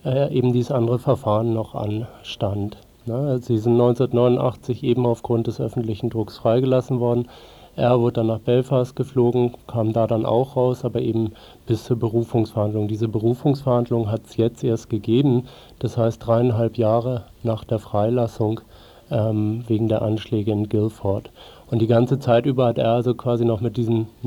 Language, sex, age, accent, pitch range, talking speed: German, male, 50-69, German, 110-125 Hz, 160 wpm